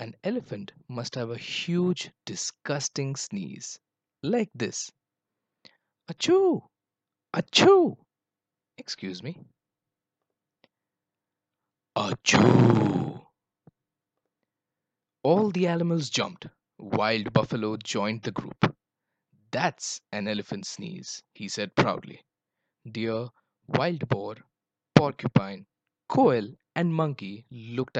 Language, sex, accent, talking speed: English, male, Indian, 85 wpm